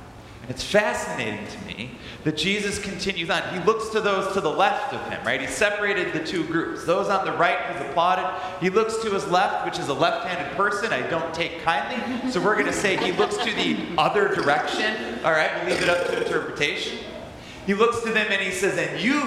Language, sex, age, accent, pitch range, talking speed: English, male, 30-49, American, 165-210 Hz, 220 wpm